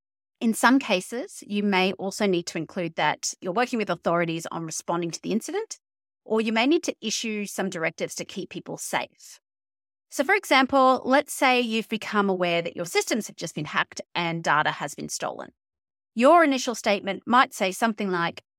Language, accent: English, Australian